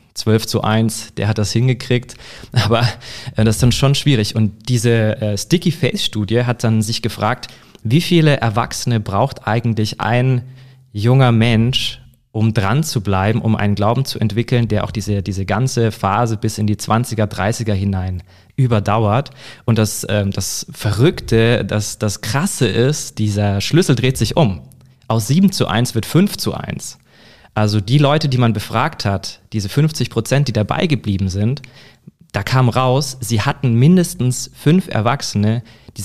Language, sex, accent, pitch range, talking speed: German, male, German, 105-125 Hz, 160 wpm